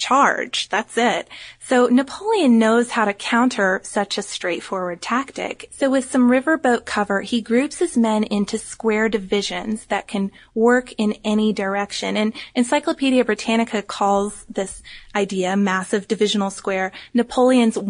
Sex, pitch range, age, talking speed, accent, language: female, 205-255 Hz, 20-39, 140 wpm, American, English